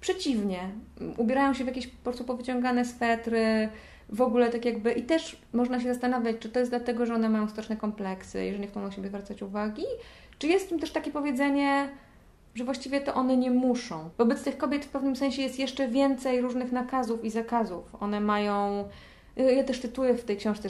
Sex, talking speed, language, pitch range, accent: female, 195 wpm, Polish, 210-255 Hz, native